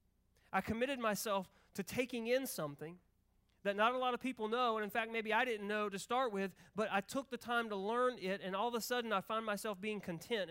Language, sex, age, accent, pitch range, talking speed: English, male, 30-49, American, 170-225 Hz, 240 wpm